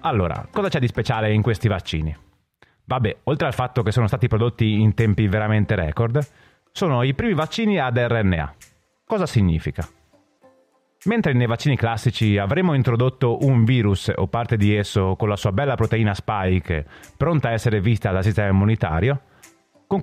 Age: 30-49